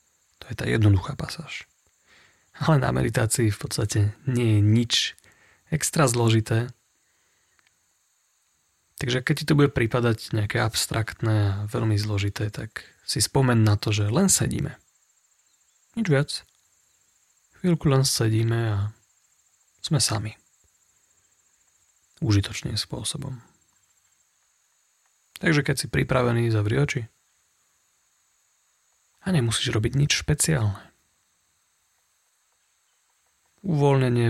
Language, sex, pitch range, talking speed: Slovak, male, 105-130 Hz, 100 wpm